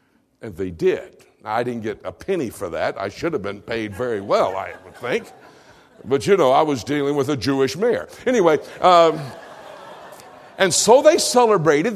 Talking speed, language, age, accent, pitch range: 180 wpm, English, 60-79, American, 130-210 Hz